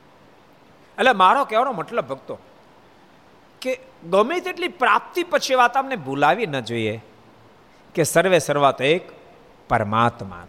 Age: 50-69